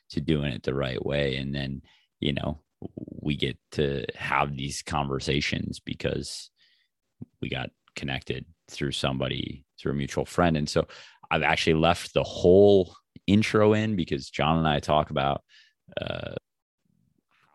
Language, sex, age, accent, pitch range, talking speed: English, male, 30-49, American, 70-80 Hz, 145 wpm